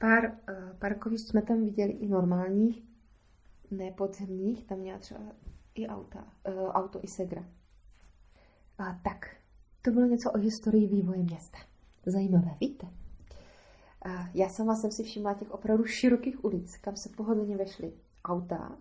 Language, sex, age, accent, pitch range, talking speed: Czech, female, 30-49, native, 185-230 Hz, 125 wpm